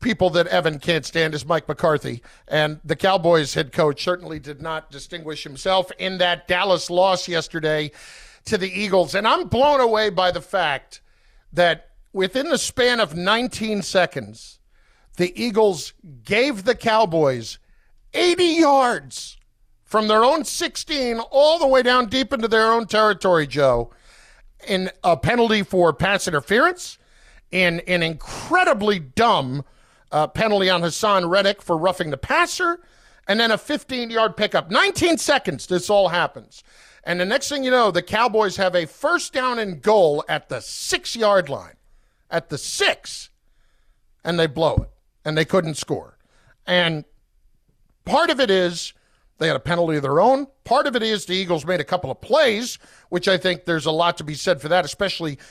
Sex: male